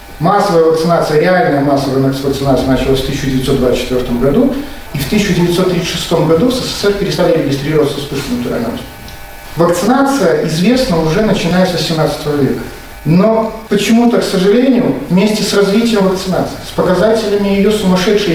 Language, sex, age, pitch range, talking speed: Russian, male, 40-59, 145-210 Hz, 125 wpm